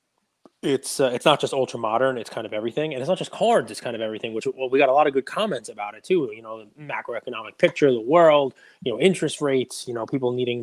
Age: 20-39